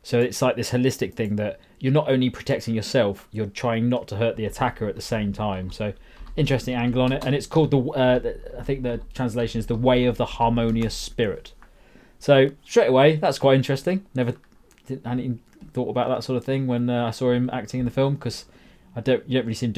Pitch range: 110-135 Hz